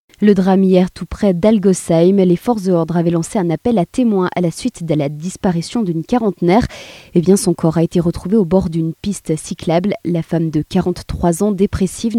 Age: 20-39